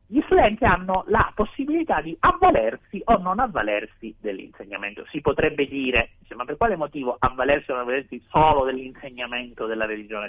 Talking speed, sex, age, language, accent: 150 wpm, male, 50-69, Italian, native